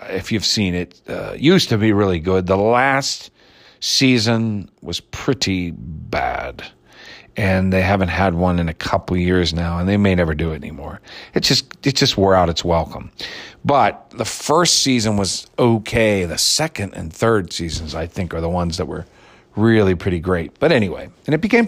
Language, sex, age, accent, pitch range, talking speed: English, male, 40-59, American, 90-120 Hz, 185 wpm